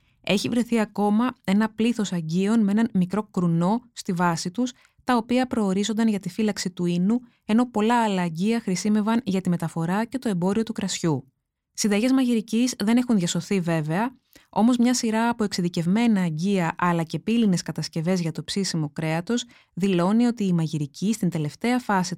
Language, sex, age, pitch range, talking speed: Greek, female, 20-39, 175-225 Hz, 165 wpm